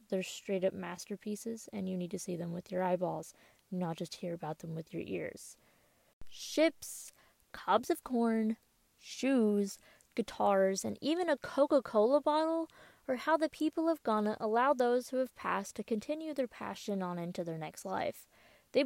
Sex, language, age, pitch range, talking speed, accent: female, English, 20-39, 190-250 Hz, 170 wpm, American